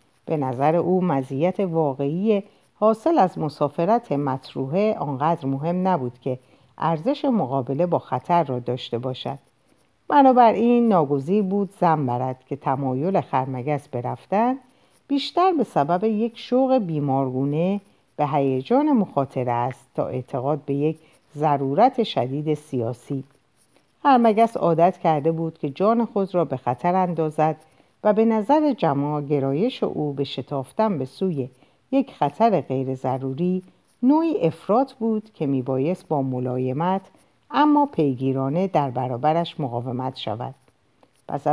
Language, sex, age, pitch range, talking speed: Persian, female, 50-69, 135-210 Hz, 125 wpm